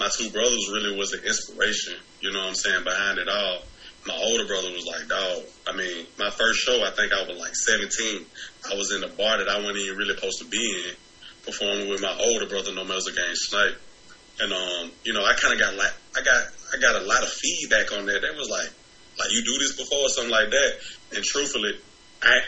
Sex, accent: male, American